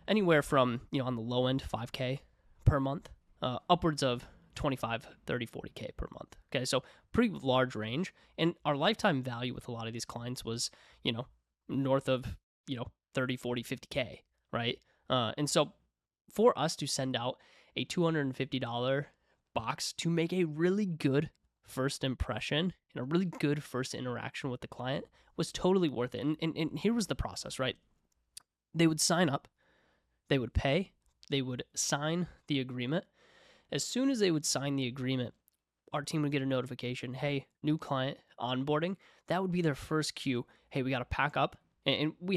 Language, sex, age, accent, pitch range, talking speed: English, male, 20-39, American, 125-160 Hz, 180 wpm